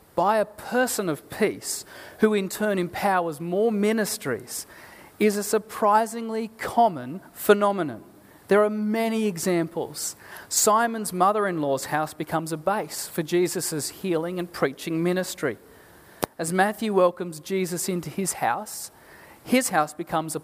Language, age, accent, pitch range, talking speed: English, 40-59, Australian, 165-210 Hz, 125 wpm